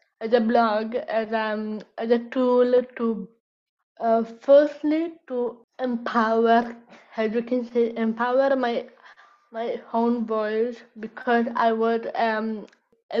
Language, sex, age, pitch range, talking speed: English, female, 10-29, 225-270 Hz, 125 wpm